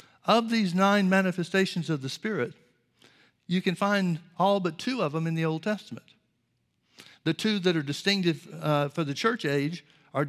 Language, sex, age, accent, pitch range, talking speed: English, male, 60-79, American, 155-185 Hz, 175 wpm